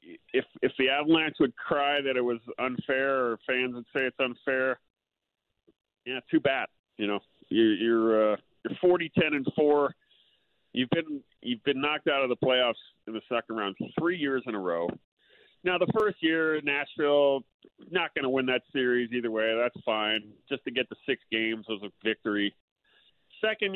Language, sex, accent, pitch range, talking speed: English, male, American, 110-160 Hz, 175 wpm